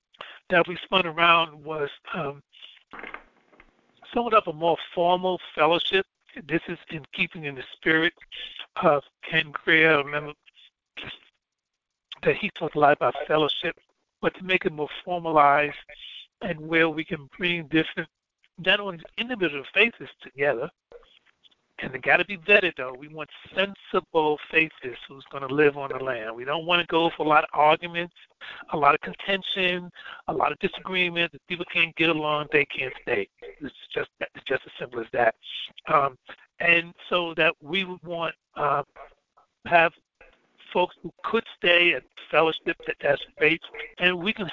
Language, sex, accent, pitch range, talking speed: English, male, American, 155-185 Hz, 165 wpm